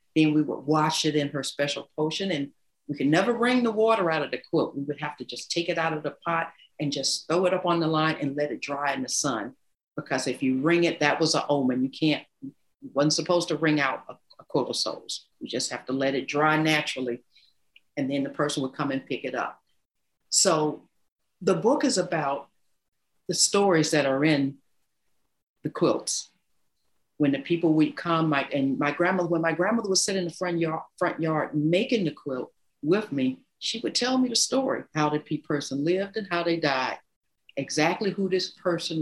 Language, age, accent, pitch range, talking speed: English, 50-69, American, 145-180 Hz, 215 wpm